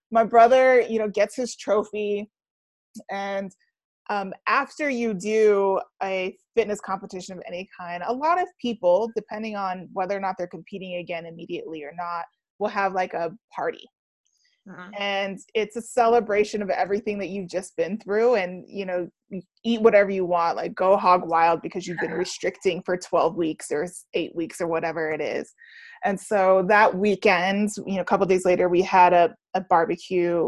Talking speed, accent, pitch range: 175 wpm, American, 180-235 Hz